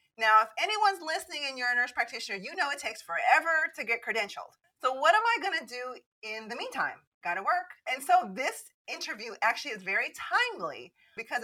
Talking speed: 205 wpm